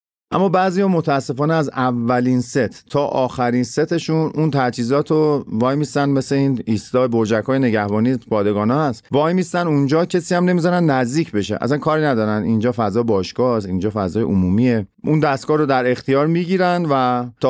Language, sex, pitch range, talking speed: Persian, male, 110-150 Hz, 160 wpm